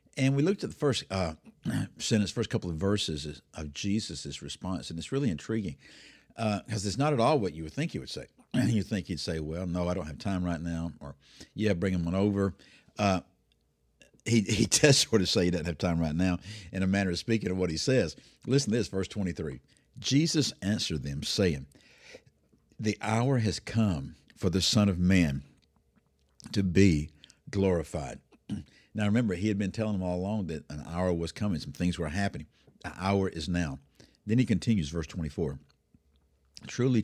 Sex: male